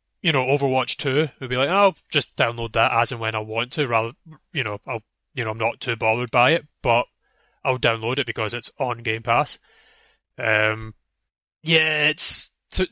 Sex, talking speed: male, 200 wpm